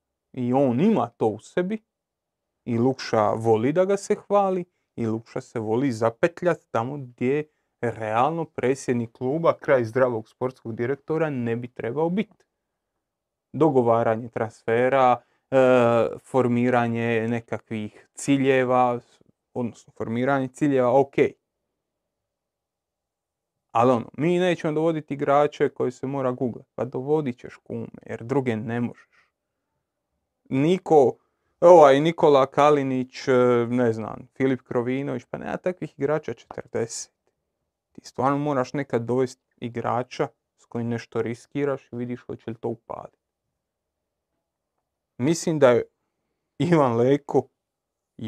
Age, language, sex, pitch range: 30-49, Croatian, male, 115-145 Hz